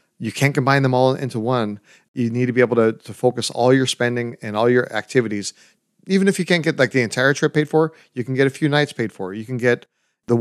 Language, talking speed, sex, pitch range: English, 260 wpm, male, 110-130 Hz